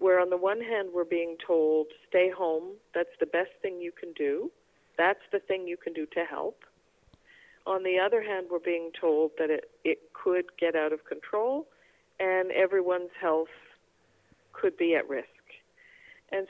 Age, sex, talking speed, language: 50-69, female, 175 wpm, English